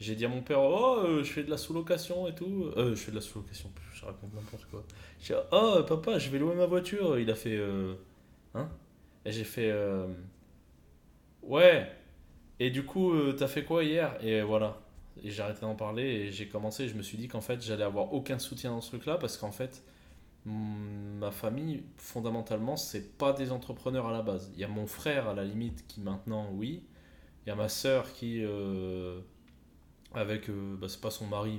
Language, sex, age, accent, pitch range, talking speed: French, male, 20-39, French, 95-120 Hz, 210 wpm